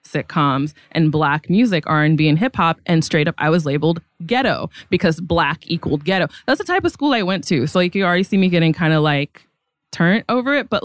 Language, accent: English, American